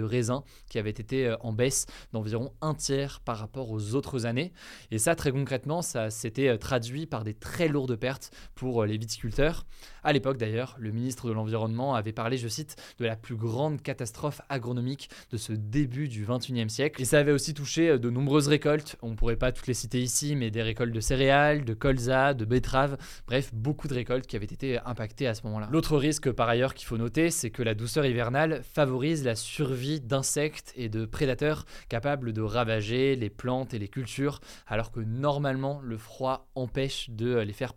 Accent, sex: French, male